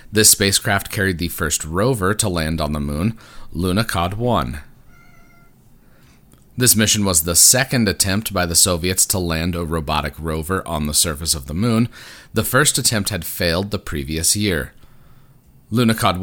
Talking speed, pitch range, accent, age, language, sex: 155 wpm, 85-110 Hz, American, 30-49, English, male